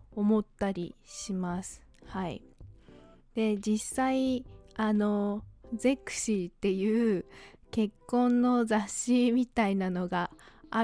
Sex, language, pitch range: female, Japanese, 195-235 Hz